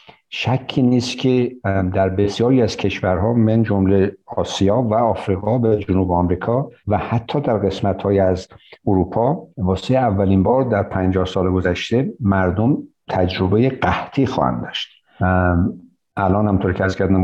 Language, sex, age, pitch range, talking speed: Persian, male, 60-79, 95-115 Hz, 130 wpm